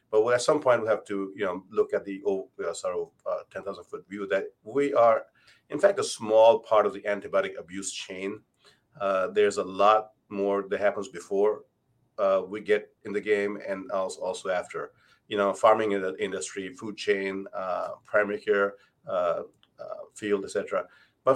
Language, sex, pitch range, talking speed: English, male, 100-145 Hz, 180 wpm